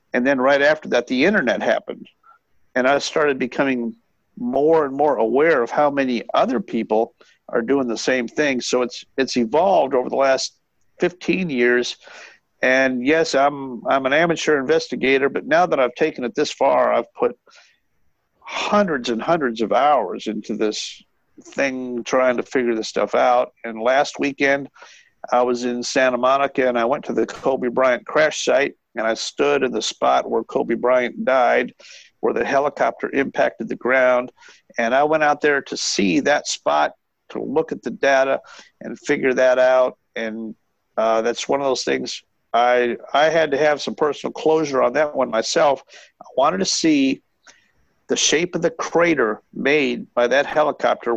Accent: American